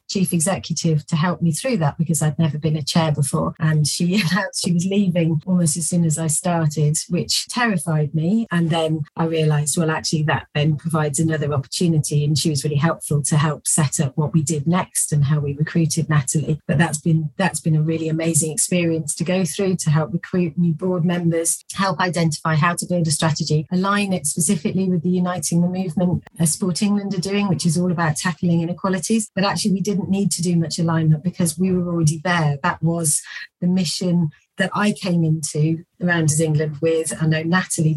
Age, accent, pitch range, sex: 40-59, British, 160-185 Hz, female